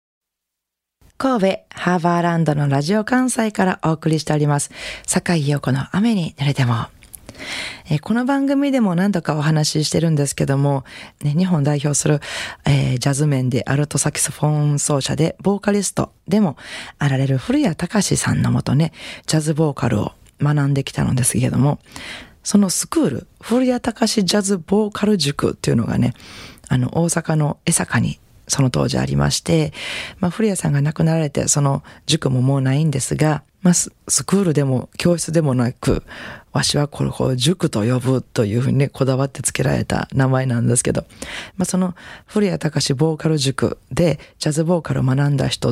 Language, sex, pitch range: Japanese, female, 135-180 Hz